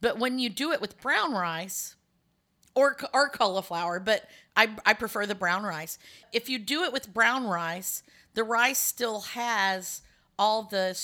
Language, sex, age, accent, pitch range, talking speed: English, female, 40-59, American, 170-205 Hz, 170 wpm